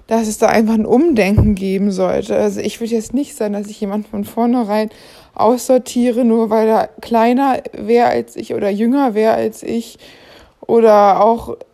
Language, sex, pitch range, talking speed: German, female, 205-230 Hz, 175 wpm